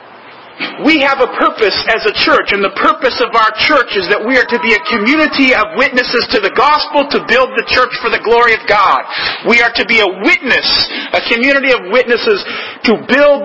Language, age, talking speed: English, 40-59, 210 wpm